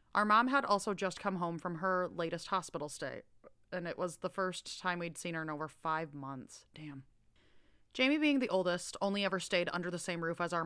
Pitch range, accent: 160-200 Hz, American